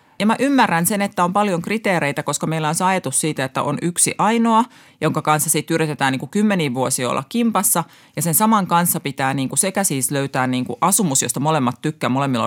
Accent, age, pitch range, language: native, 30-49, 145-210 Hz, Finnish